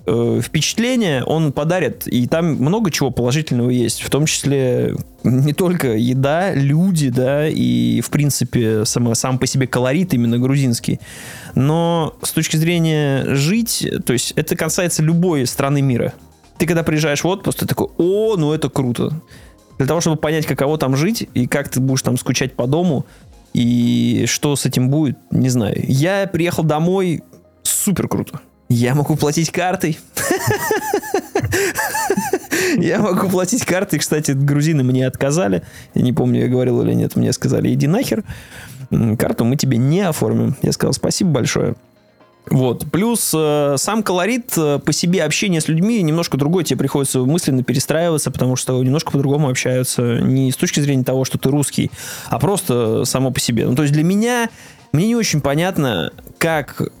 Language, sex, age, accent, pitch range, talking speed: Russian, male, 20-39, native, 130-170 Hz, 160 wpm